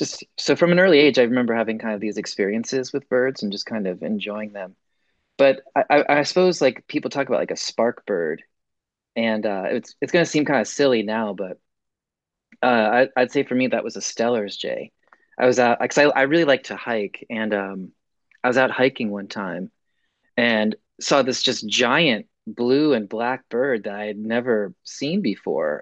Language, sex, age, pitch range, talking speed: English, male, 30-49, 110-130 Hz, 205 wpm